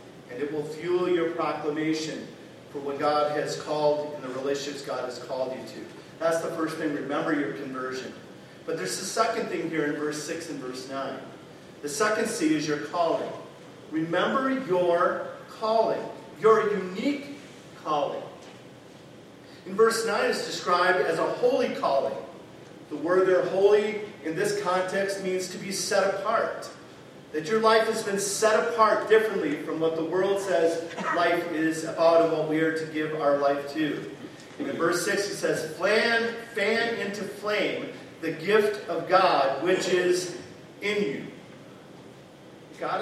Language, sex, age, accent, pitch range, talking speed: English, male, 40-59, American, 155-210 Hz, 160 wpm